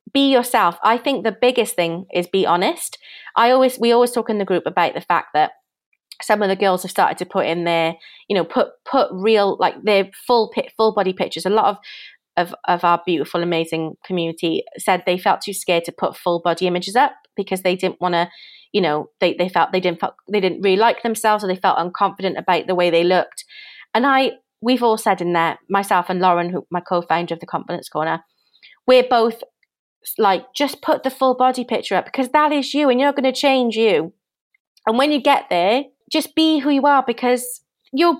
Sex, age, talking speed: female, 30-49, 215 wpm